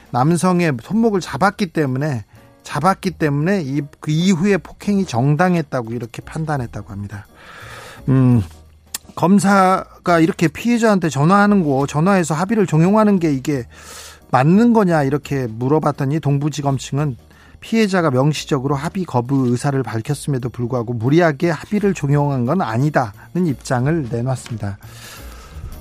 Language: Korean